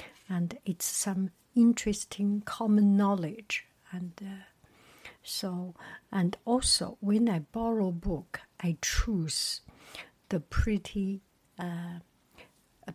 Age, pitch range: 60-79, 175-210 Hz